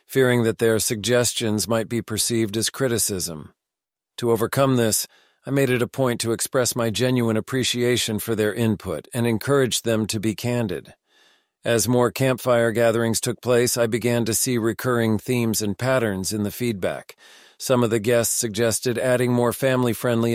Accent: American